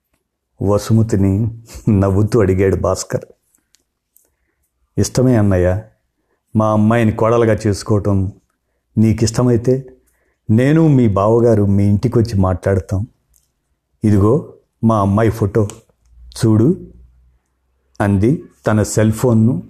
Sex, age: male, 50-69